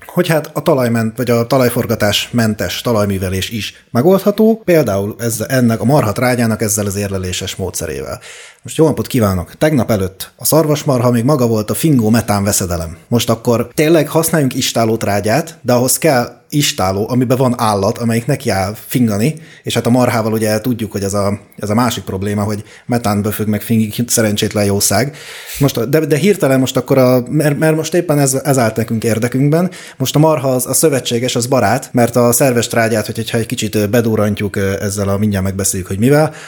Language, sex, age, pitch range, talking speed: Hungarian, male, 30-49, 105-135 Hz, 180 wpm